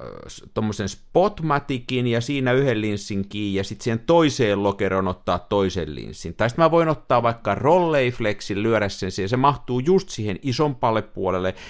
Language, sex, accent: Finnish, male, native